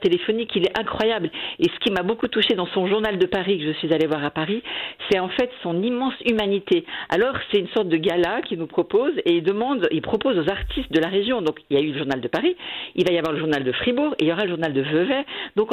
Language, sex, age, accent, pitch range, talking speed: French, female, 50-69, French, 155-225 Hz, 280 wpm